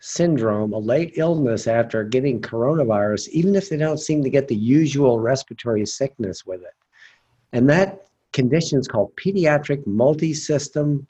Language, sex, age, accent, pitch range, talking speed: English, male, 50-69, American, 115-155 Hz, 145 wpm